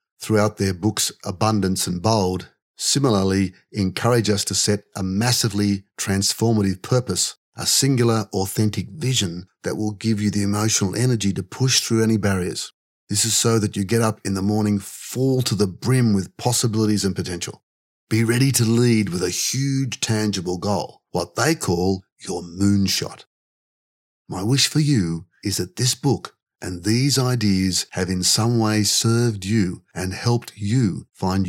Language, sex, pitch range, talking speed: English, male, 95-115 Hz, 160 wpm